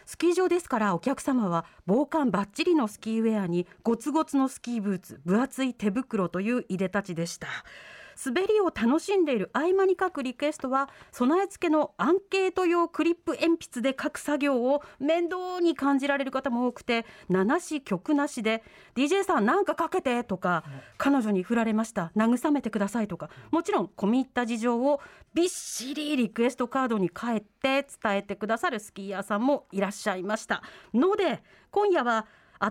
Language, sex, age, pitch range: Japanese, female, 40-59, 215-315 Hz